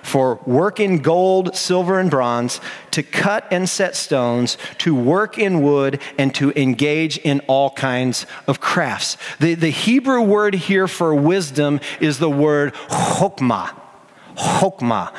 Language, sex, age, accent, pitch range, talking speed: English, male, 40-59, American, 145-190 Hz, 140 wpm